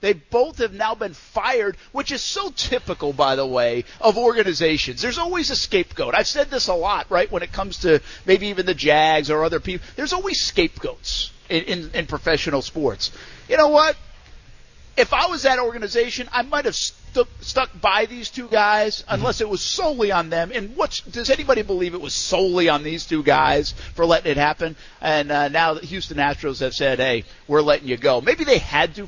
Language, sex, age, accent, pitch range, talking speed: English, male, 50-69, American, 150-230 Hz, 200 wpm